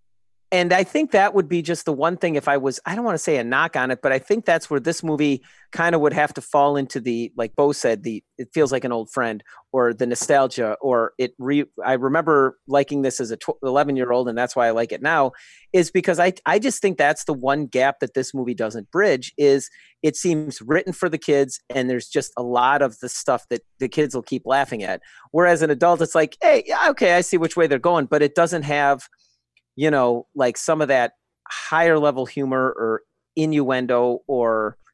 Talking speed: 235 wpm